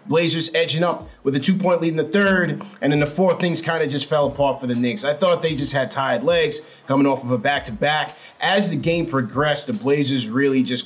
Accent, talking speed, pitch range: American, 240 wpm, 130-150 Hz